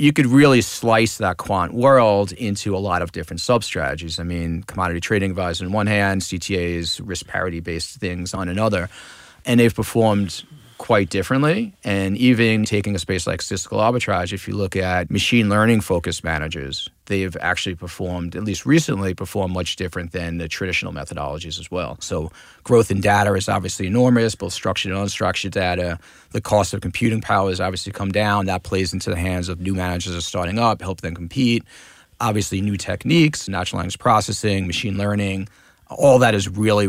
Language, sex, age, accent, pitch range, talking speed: English, male, 30-49, American, 90-110 Hz, 180 wpm